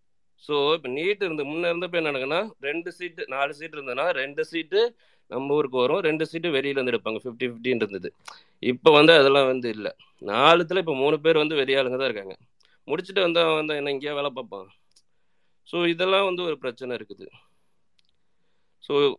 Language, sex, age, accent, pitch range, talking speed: Tamil, male, 30-49, native, 115-160 Hz, 160 wpm